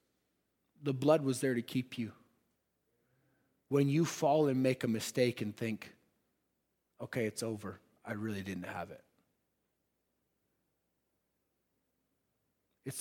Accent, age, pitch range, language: American, 30-49, 125-165 Hz, English